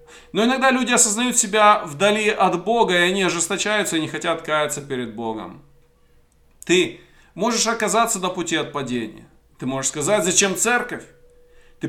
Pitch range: 150-215 Hz